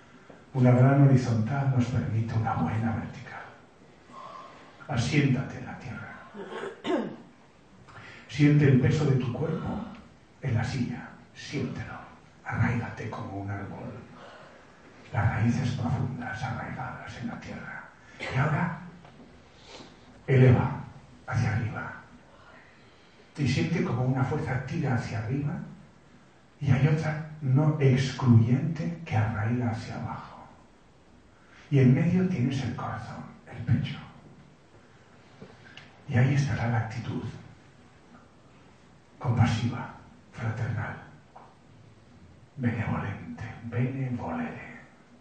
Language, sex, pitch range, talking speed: Spanish, male, 115-135 Hz, 95 wpm